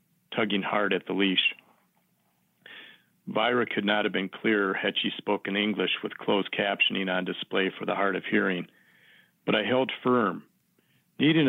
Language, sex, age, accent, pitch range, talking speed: English, male, 50-69, American, 100-110 Hz, 155 wpm